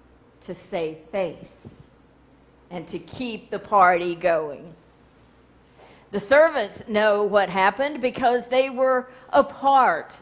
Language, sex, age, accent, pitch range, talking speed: English, female, 50-69, American, 180-245 Hz, 110 wpm